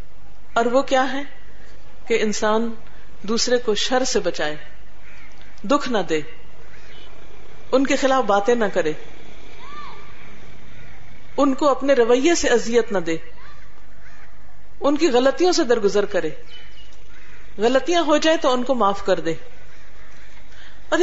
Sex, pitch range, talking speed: female, 200-260 Hz, 125 wpm